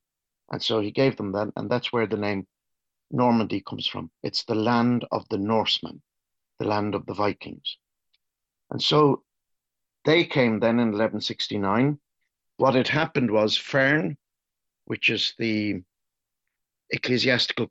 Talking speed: 140 wpm